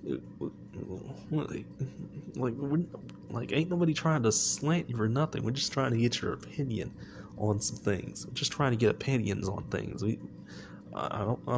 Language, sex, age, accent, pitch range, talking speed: English, male, 20-39, American, 100-135 Hz, 175 wpm